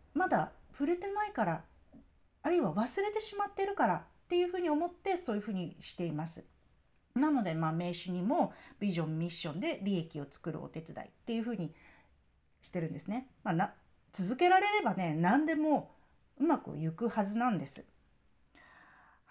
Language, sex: Japanese, female